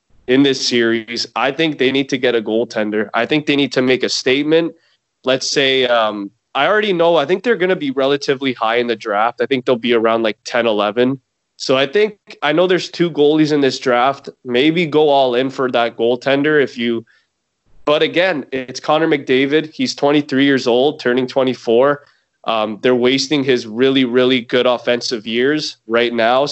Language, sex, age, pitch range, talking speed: English, male, 20-39, 120-145 Hz, 195 wpm